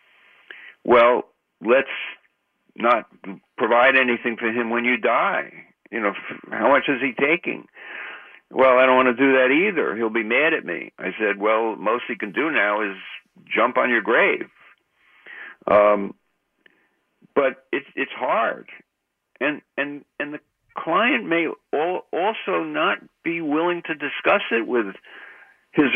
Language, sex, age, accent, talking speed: English, male, 60-79, American, 145 wpm